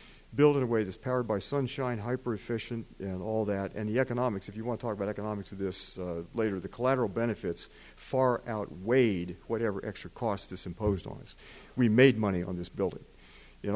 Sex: male